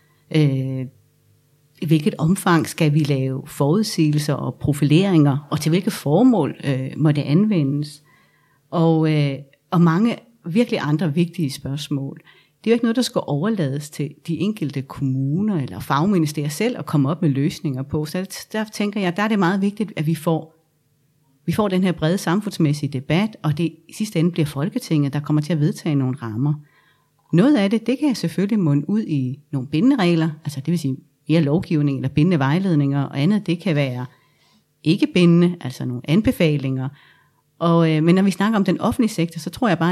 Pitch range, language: 145-180 Hz, Danish